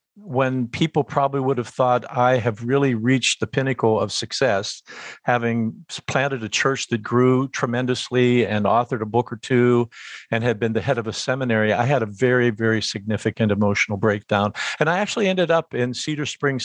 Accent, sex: American, male